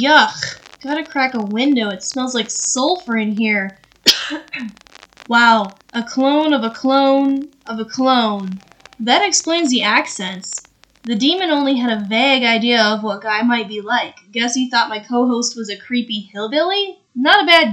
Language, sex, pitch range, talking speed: English, female, 215-275 Hz, 165 wpm